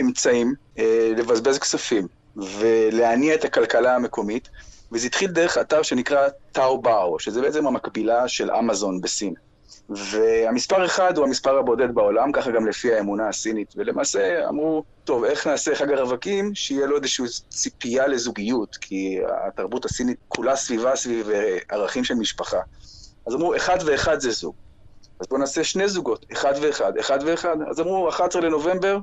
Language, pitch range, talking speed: Hebrew, 115-185 Hz, 150 wpm